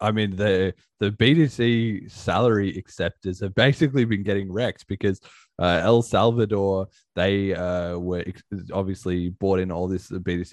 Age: 20-39